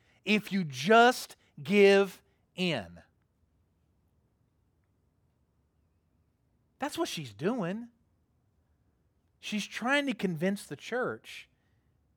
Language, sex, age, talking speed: English, male, 40-59, 75 wpm